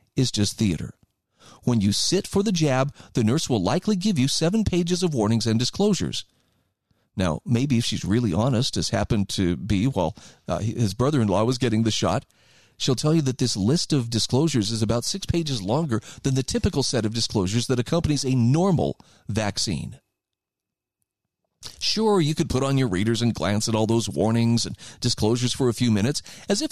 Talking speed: 185 wpm